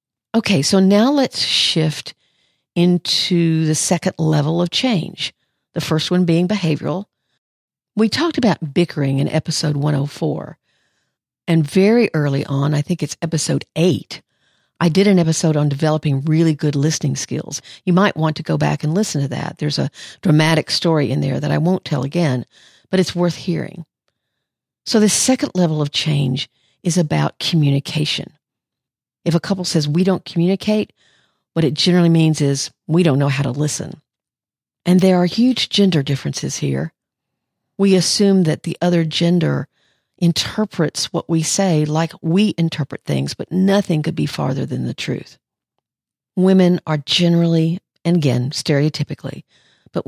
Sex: female